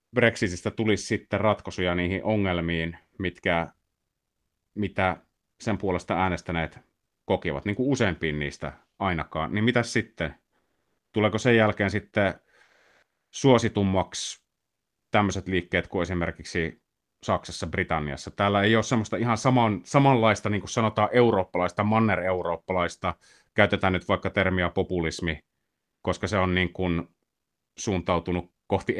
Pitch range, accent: 85-110 Hz, native